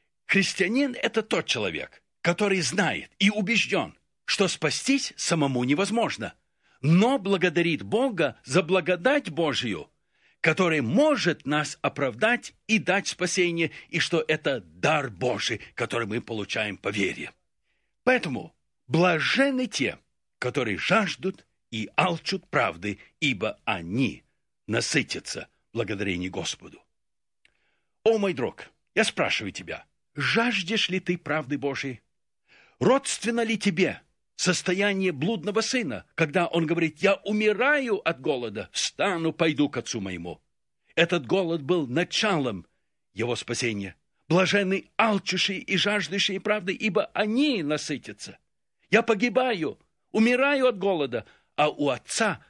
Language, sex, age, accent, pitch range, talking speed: Russian, male, 60-79, native, 150-215 Hz, 115 wpm